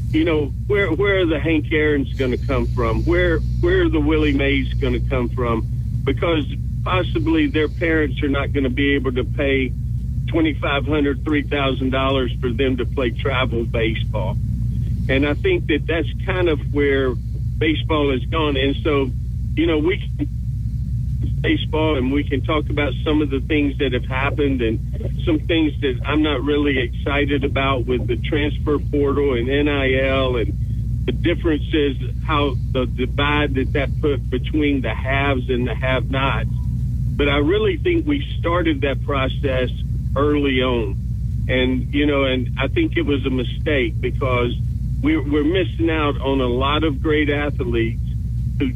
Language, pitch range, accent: English, 120-145 Hz, American